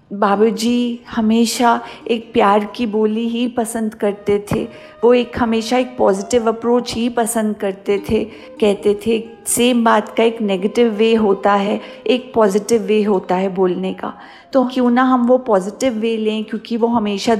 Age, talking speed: 50-69, 165 wpm